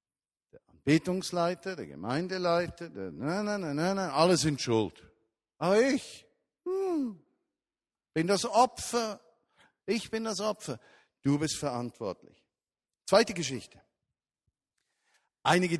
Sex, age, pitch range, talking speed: male, 50-69, 120-170 Hz, 105 wpm